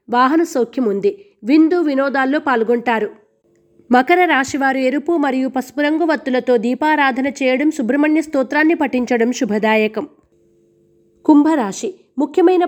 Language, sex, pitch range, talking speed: Telugu, female, 245-310 Hz, 95 wpm